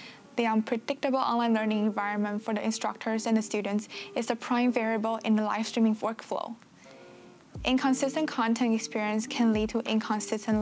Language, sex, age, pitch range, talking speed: English, female, 10-29, 215-245 Hz, 155 wpm